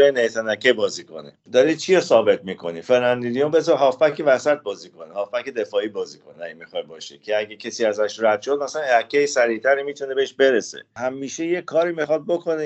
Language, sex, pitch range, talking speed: Persian, male, 115-150 Hz, 170 wpm